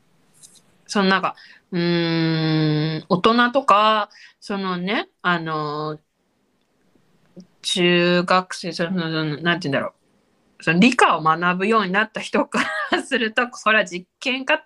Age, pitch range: 20-39, 175-270 Hz